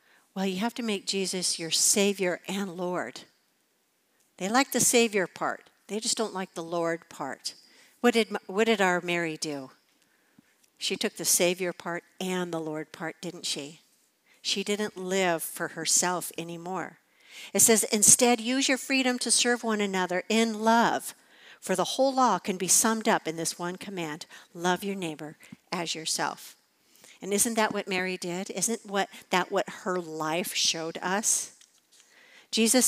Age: 60-79